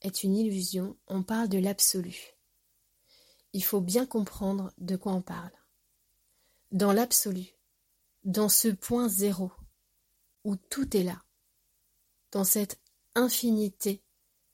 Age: 30-49